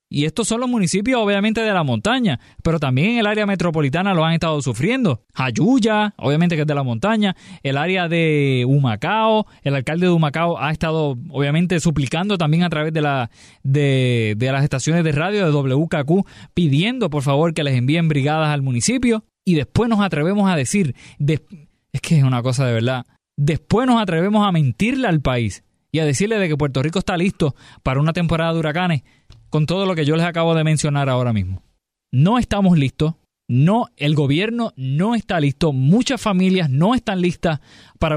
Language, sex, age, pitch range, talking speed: Spanish, male, 20-39, 140-185 Hz, 190 wpm